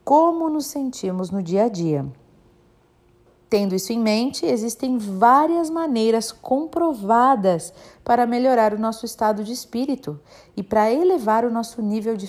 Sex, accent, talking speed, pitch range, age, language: female, Brazilian, 140 wpm, 170-235 Hz, 40-59, Portuguese